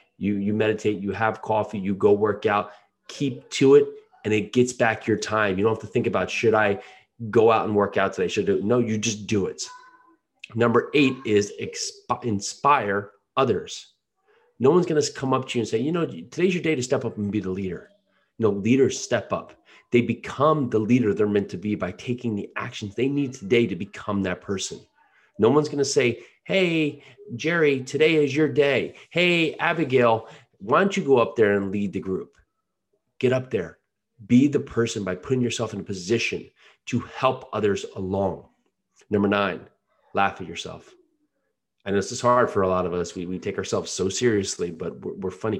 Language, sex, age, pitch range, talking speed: English, male, 30-49, 105-150 Hz, 205 wpm